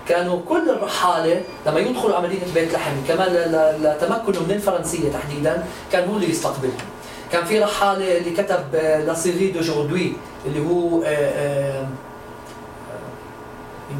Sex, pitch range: male, 165-240 Hz